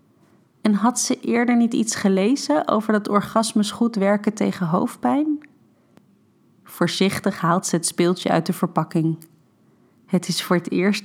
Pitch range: 170-195 Hz